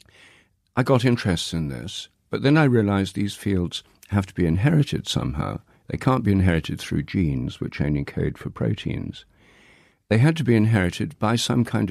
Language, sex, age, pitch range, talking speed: English, male, 60-79, 85-115 Hz, 175 wpm